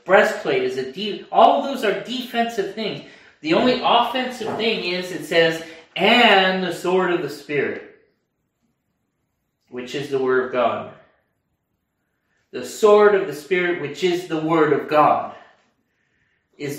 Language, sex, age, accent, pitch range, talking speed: English, male, 30-49, American, 150-210 Hz, 145 wpm